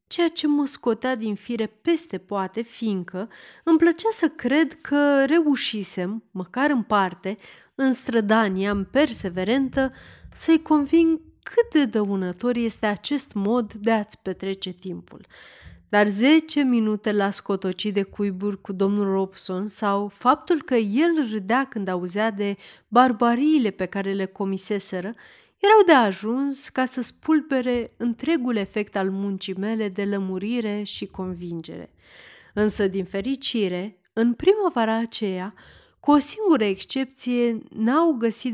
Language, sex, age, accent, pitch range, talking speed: Romanian, female, 30-49, native, 195-260 Hz, 130 wpm